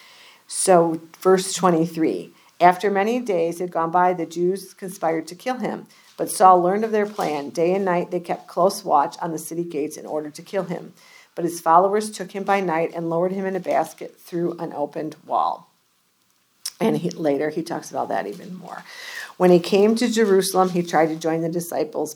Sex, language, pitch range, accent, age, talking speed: female, English, 165-190 Hz, American, 50-69, 200 wpm